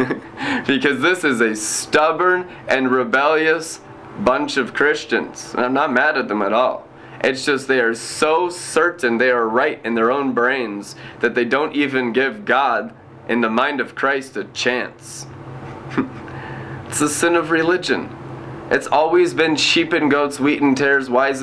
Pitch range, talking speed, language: 125-145 Hz, 165 wpm, English